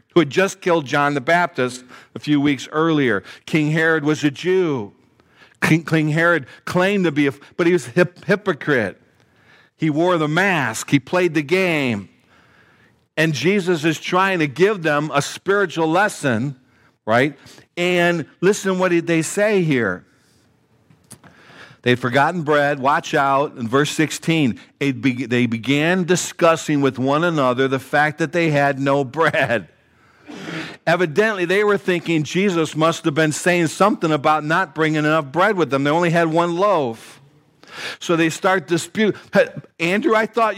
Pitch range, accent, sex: 140-180 Hz, American, male